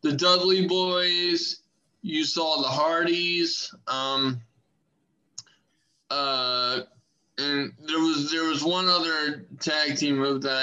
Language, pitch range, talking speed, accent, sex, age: English, 135-170 Hz, 115 wpm, American, male, 20-39